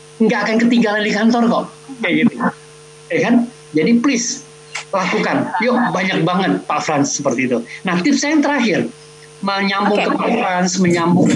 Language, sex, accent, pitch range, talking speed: Indonesian, male, native, 155-235 Hz, 160 wpm